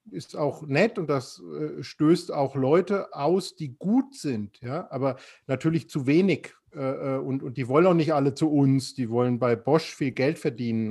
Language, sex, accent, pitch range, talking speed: German, male, German, 125-155 Hz, 190 wpm